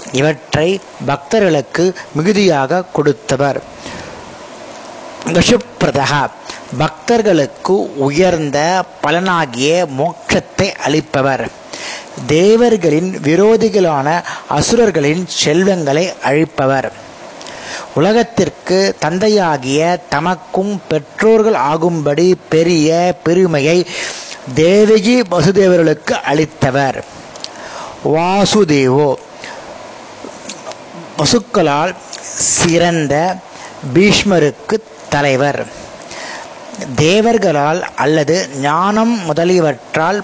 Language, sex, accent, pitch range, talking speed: Tamil, male, native, 145-195 Hz, 50 wpm